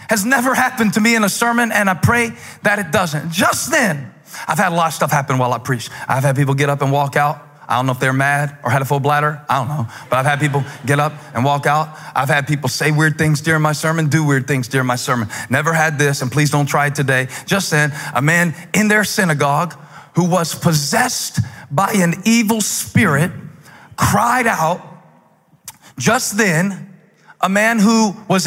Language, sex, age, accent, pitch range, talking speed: English, male, 40-59, American, 150-215 Hz, 215 wpm